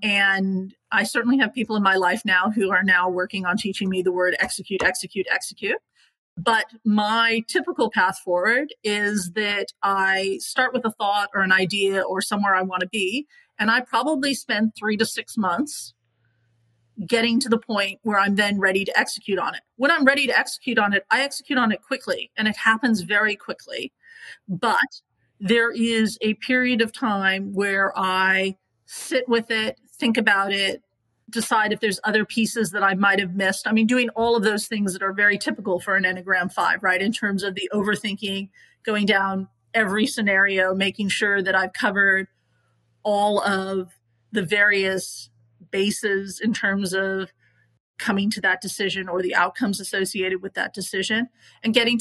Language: English